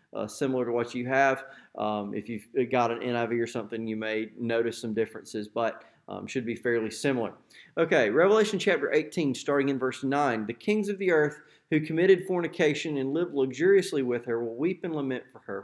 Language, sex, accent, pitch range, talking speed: English, male, American, 120-150 Hz, 200 wpm